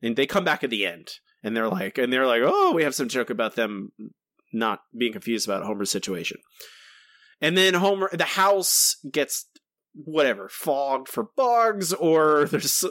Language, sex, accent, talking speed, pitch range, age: English, male, American, 175 wpm, 120-170 Hz, 30-49